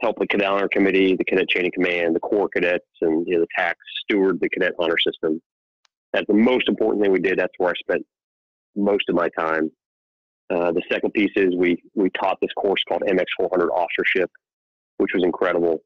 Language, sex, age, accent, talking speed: English, male, 30-49, American, 200 wpm